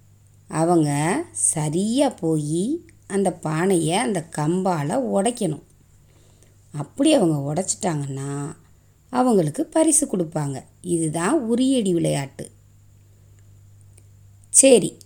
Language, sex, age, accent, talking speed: Tamil, female, 30-49, native, 70 wpm